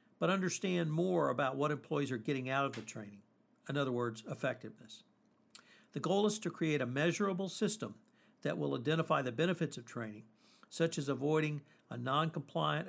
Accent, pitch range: American, 135-180 Hz